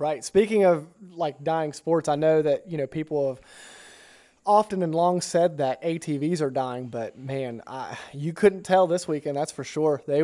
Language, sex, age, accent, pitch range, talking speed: English, male, 30-49, American, 140-170 Hz, 195 wpm